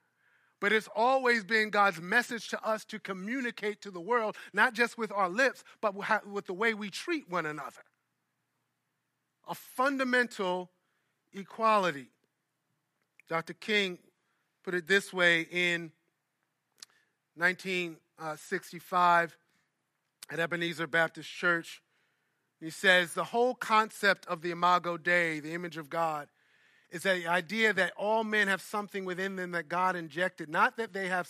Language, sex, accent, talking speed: English, male, American, 135 wpm